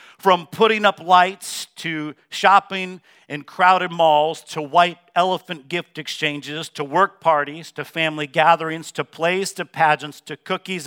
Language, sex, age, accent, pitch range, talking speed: English, male, 50-69, American, 145-175 Hz, 145 wpm